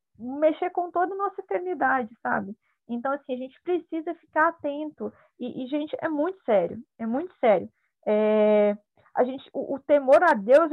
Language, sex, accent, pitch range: Portuguese, female, Brazilian, 240-310 Hz